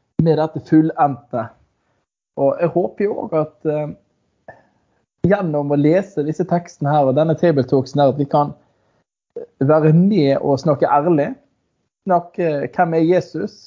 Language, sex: English, male